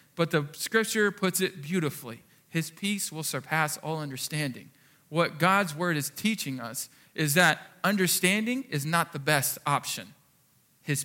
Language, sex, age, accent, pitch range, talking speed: English, male, 40-59, American, 145-190 Hz, 145 wpm